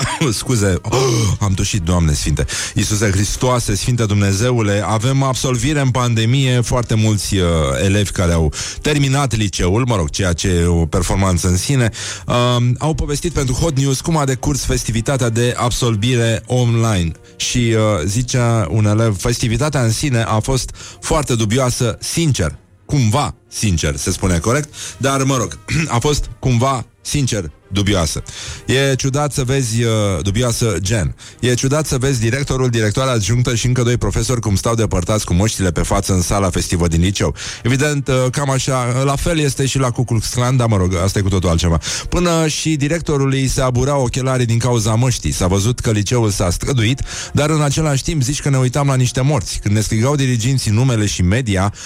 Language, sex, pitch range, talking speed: Romanian, male, 100-130 Hz, 170 wpm